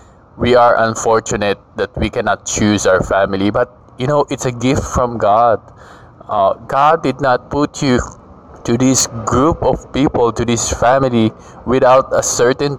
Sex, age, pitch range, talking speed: male, 20-39, 95-120 Hz, 160 wpm